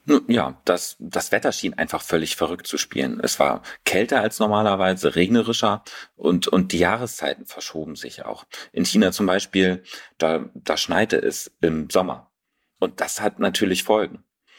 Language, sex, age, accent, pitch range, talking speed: German, male, 40-59, German, 80-95 Hz, 155 wpm